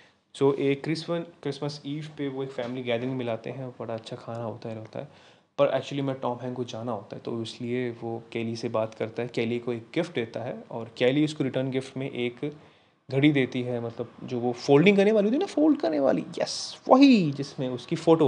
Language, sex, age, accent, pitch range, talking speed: Hindi, male, 20-39, native, 120-140 Hz, 225 wpm